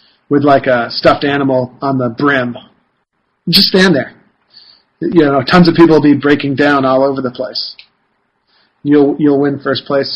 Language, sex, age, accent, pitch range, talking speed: English, male, 40-59, American, 135-170 Hz, 170 wpm